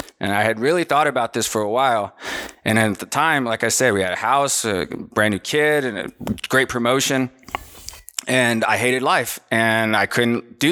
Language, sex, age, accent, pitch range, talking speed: English, male, 20-39, American, 115-135 Hz, 205 wpm